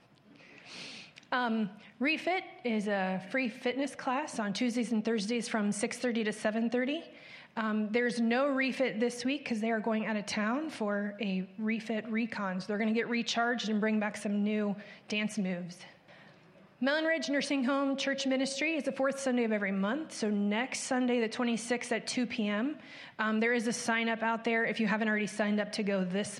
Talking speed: 185 wpm